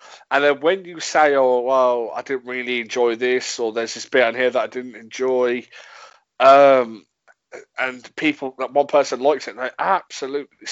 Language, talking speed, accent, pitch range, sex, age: English, 195 wpm, British, 130-150 Hz, male, 20-39